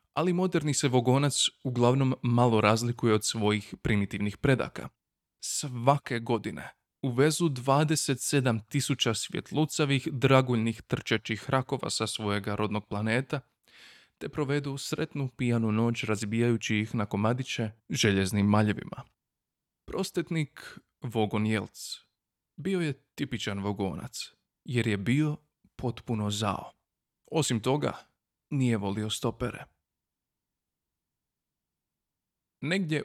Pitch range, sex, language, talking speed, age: 105-135 Hz, male, Croatian, 95 wpm, 20-39